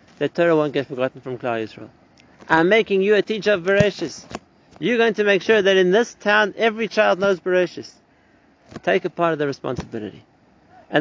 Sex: male